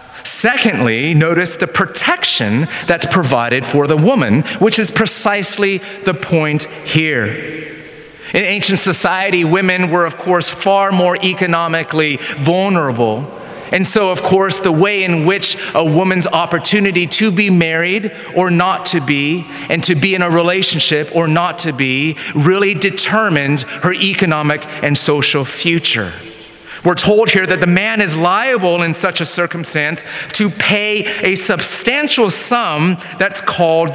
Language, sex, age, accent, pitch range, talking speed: English, male, 30-49, American, 165-215 Hz, 140 wpm